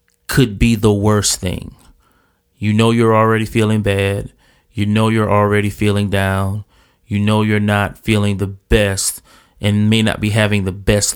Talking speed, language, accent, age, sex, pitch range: 165 wpm, English, American, 30-49, male, 100-120 Hz